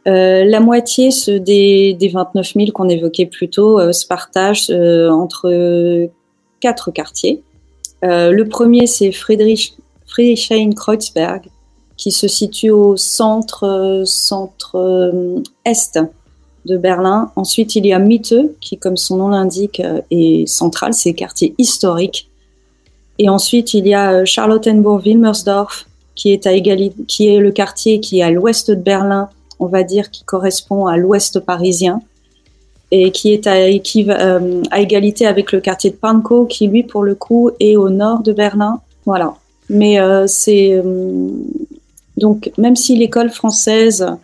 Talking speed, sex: 155 wpm, female